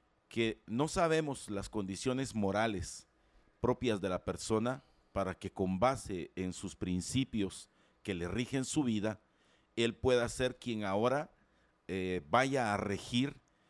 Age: 50-69